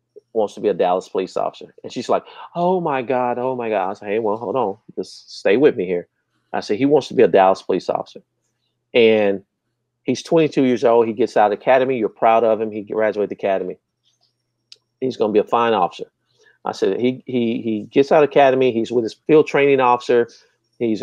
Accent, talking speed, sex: American, 215 wpm, male